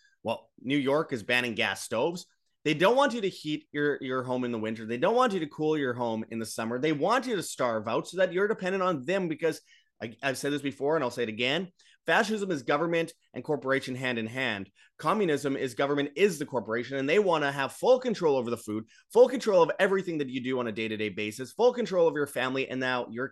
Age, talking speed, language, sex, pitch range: 30-49, 245 wpm, English, male, 120-155 Hz